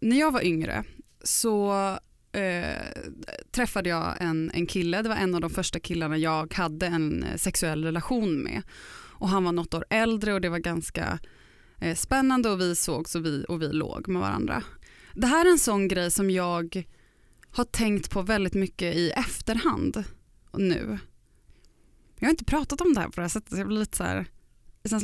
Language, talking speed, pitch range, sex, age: Swedish, 180 wpm, 175-230 Hz, female, 20-39